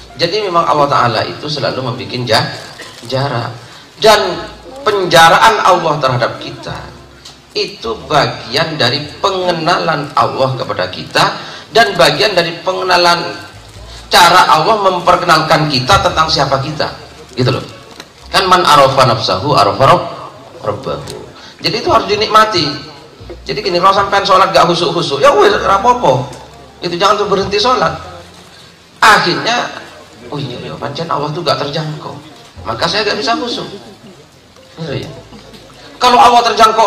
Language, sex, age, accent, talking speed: Indonesian, male, 40-59, native, 115 wpm